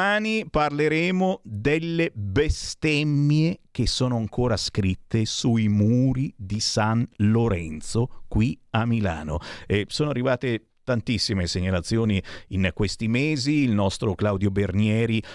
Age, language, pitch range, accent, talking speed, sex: 50-69, Italian, 105-155 Hz, native, 105 wpm, male